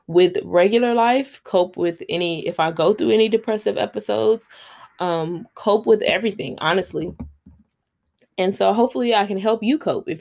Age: 20-39